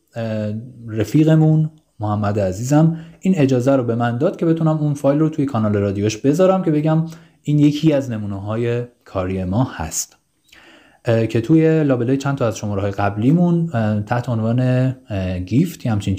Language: English